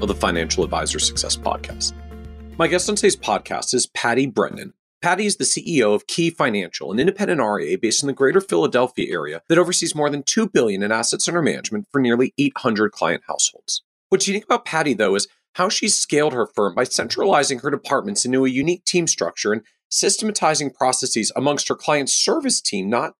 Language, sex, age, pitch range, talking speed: English, male, 40-59, 130-195 Hz, 190 wpm